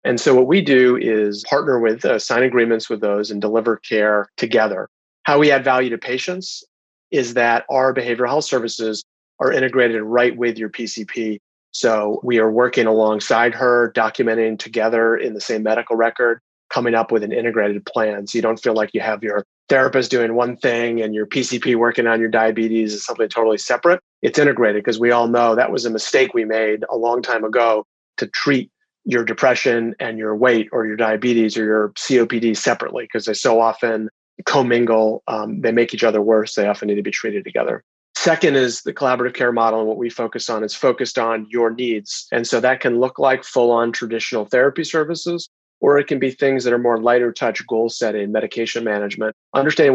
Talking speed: 200 wpm